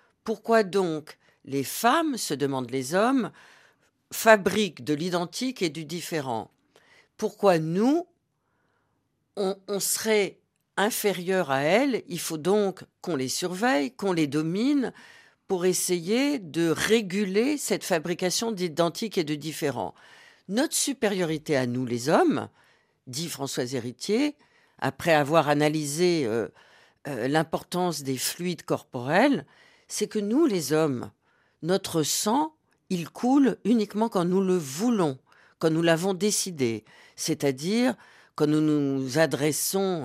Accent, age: French, 50-69